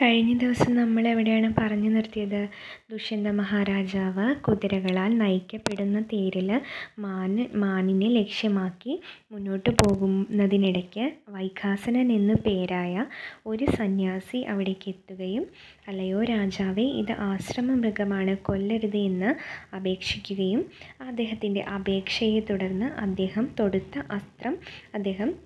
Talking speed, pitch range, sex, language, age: 85 wpm, 195-235 Hz, female, Malayalam, 20-39